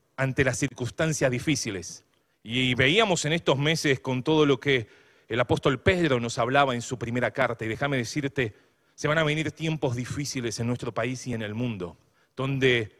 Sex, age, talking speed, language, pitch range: male, 40-59, 180 wpm, Spanish, 125-165 Hz